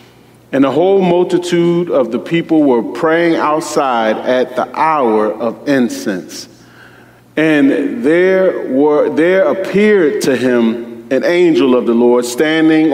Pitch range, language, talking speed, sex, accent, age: 130-195 Hz, English, 130 wpm, male, American, 30-49